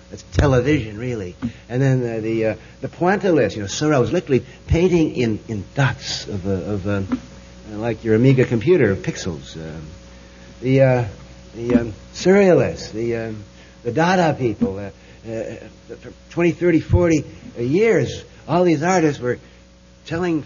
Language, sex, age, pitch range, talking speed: English, male, 60-79, 110-150 Hz, 150 wpm